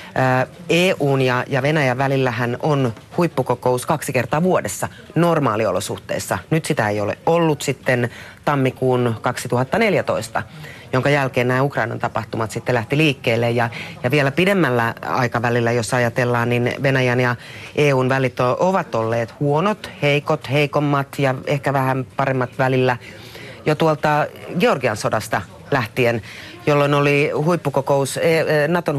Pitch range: 120-145 Hz